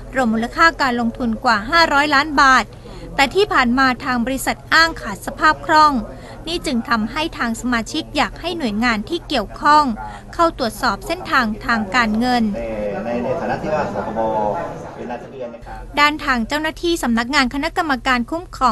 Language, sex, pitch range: Thai, female, 240-310 Hz